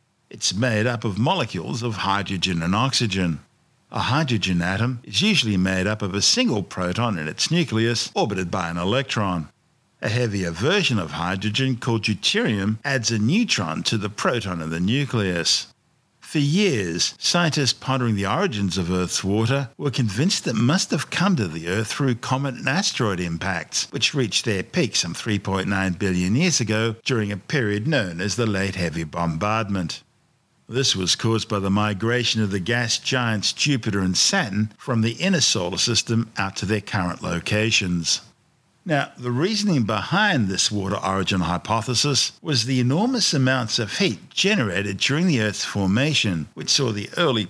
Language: English